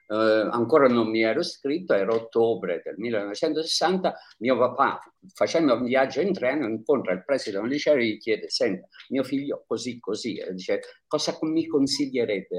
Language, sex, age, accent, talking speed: Italian, male, 50-69, native, 165 wpm